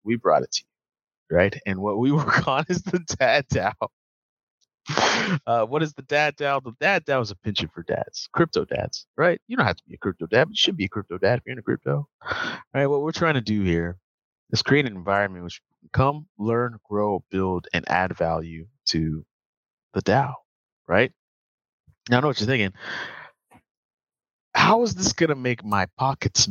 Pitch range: 90-135 Hz